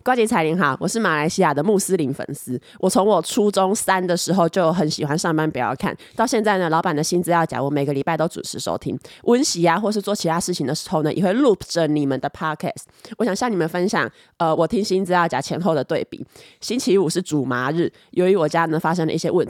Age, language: 20-39, Chinese